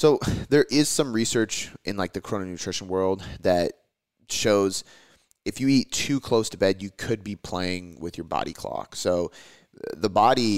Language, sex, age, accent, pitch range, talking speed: English, male, 30-49, American, 90-110 Hz, 170 wpm